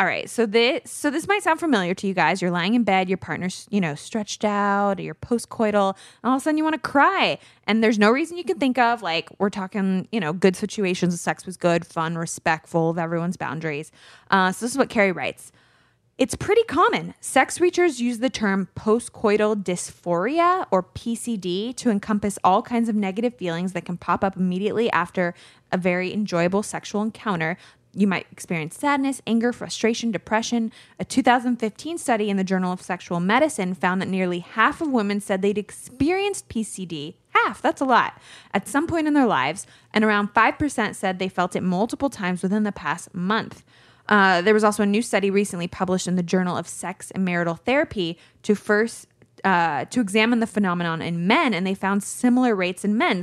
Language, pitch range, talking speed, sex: English, 180-235 Hz, 195 wpm, female